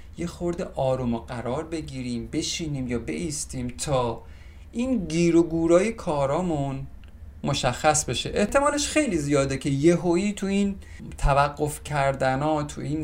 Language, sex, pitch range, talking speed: Persian, male, 120-180 Hz, 130 wpm